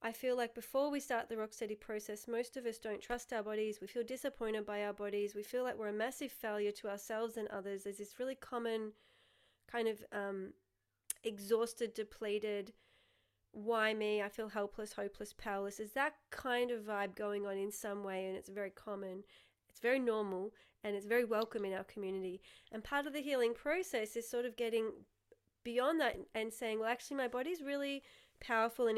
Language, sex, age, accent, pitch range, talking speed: English, female, 30-49, Australian, 205-245 Hz, 195 wpm